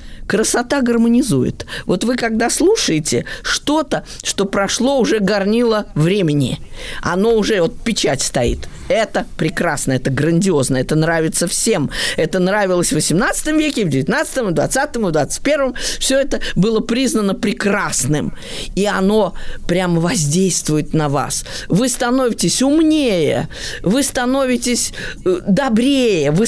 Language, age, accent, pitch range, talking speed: Russian, 20-39, native, 180-255 Hz, 115 wpm